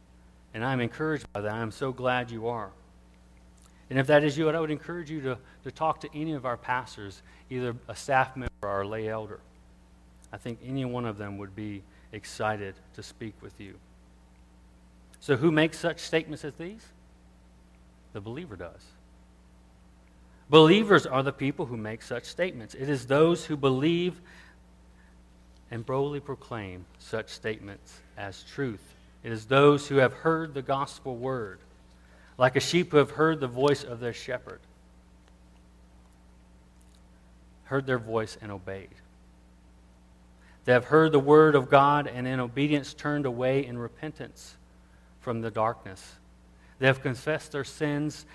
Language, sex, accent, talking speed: English, male, American, 155 wpm